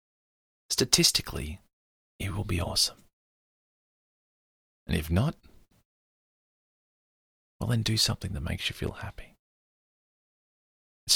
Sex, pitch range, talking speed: male, 75-95 Hz, 95 wpm